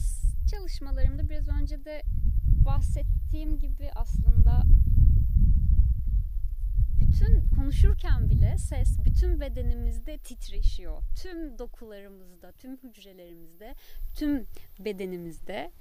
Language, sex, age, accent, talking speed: Turkish, female, 30-49, native, 75 wpm